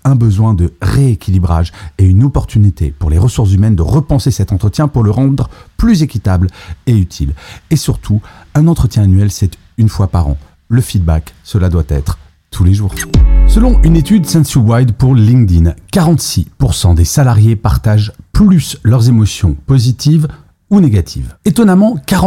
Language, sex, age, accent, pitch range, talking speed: French, male, 40-59, French, 95-145 Hz, 155 wpm